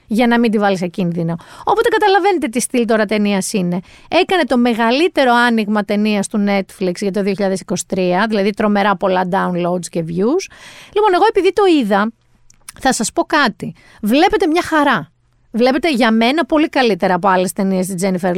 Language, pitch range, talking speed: Greek, 200-315 Hz, 165 wpm